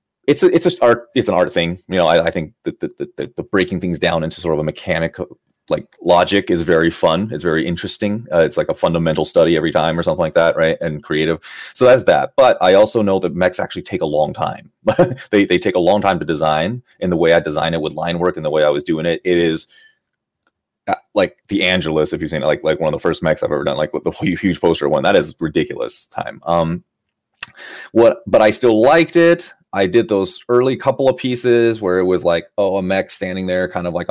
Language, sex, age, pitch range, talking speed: English, male, 30-49, 85-115 Hz, 250 wpm